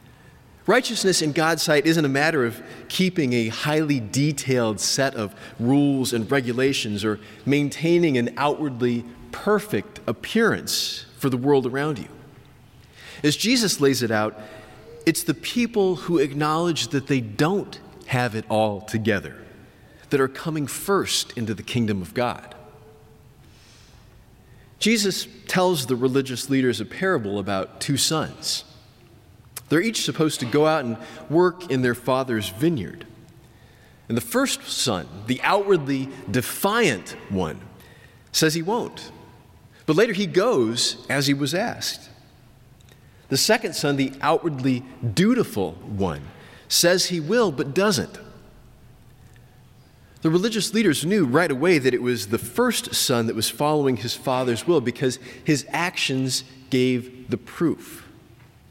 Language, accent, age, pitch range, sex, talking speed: English, American, 30-49, 120-160 Hz, male, 135 wpm